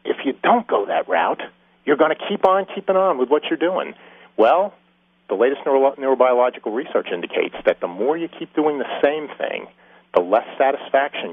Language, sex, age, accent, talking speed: English, male, 50-69, American, 185 wpm